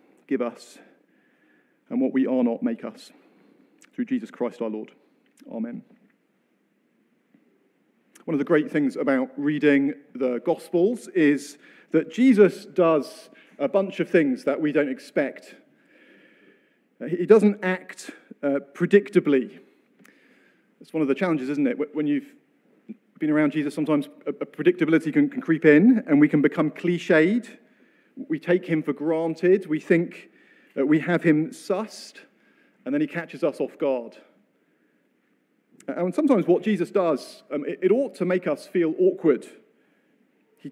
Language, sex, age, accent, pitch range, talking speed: English, male, 40-59, British, 160-265 Hz, 145 wpm